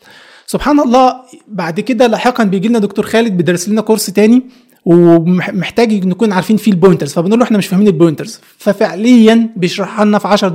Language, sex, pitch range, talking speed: Arabic, male, 185-230 Hz, 165 wpm